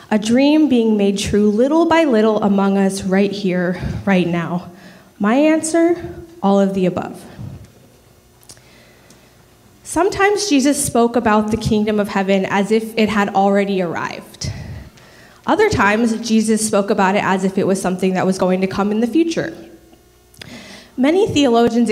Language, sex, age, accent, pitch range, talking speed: English, female, 20-39, American, 195-240 Hz, 150 wpm